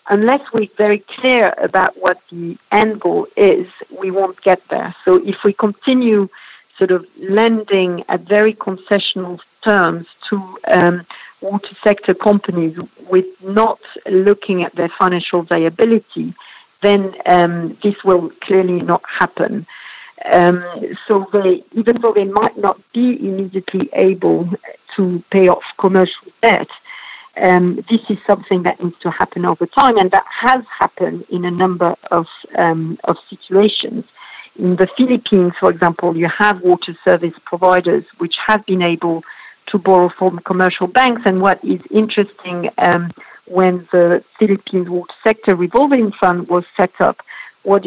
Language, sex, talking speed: English, female, 145 wpm